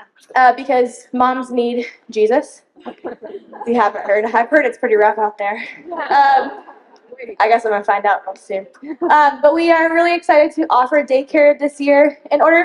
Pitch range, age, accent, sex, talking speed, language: 230-295 Hz, 10-29, American, female, 180 wpm, English